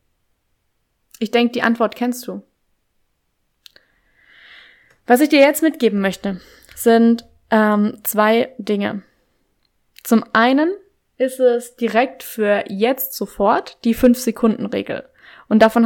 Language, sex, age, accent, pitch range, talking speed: German, female, 20-39, German, 215-260 Hz, 105 wpm